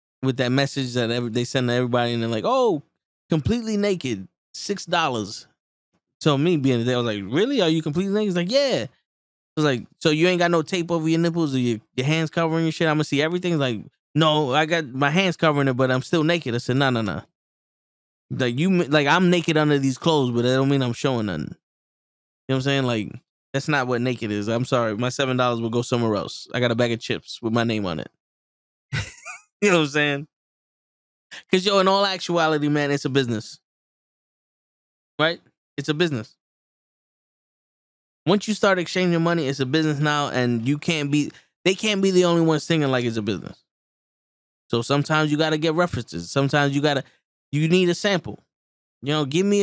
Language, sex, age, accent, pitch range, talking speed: English, male, 10-29, American, 125-170 Hz, 215 wpm